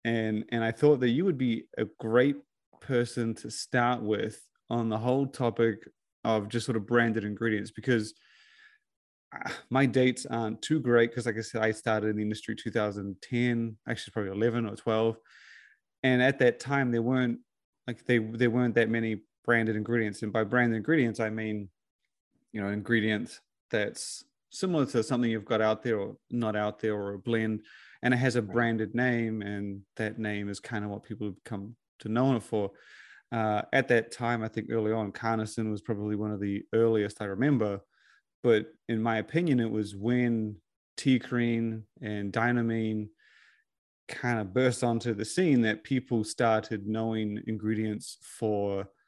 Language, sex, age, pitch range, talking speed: English, male, 30-49, 110-120 Hz, 175 wpm